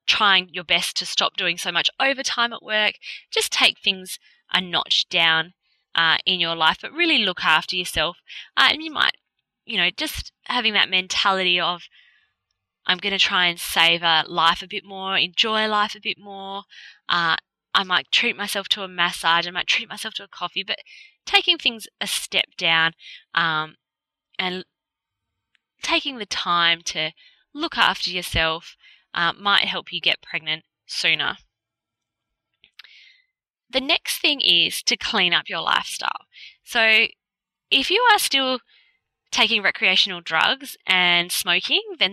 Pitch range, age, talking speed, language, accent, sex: 175-265 Hz, 20-39, 155 wpm, English, Australian, female